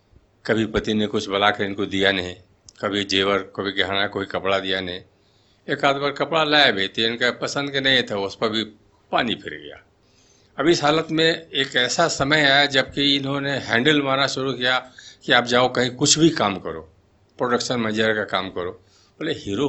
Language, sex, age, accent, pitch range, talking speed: Hindi, male, 50-69, native, 100-135 Hz, 200 wpm